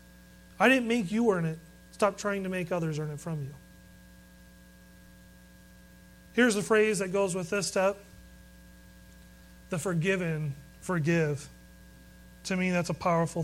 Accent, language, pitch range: American, English, 155-200 Hz